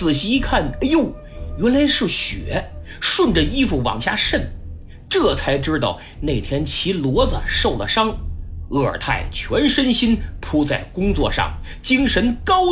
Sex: male